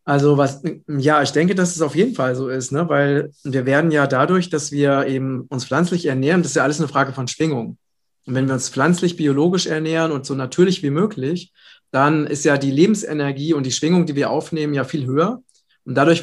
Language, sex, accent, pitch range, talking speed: German, male, German, 135-160 Hz, 220 wpm